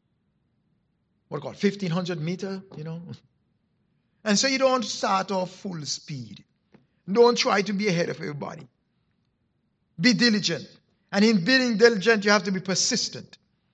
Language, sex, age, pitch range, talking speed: English, male, 60-79, 170-260 Hz, 150 wpm